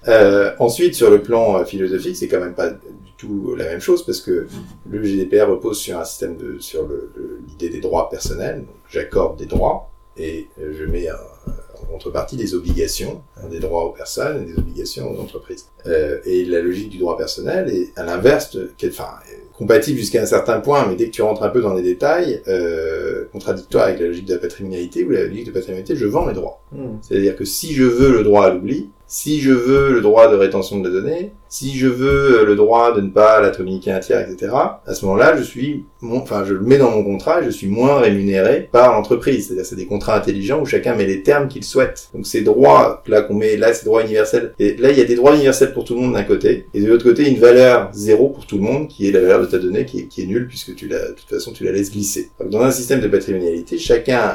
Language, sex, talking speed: French, male, 250 wpm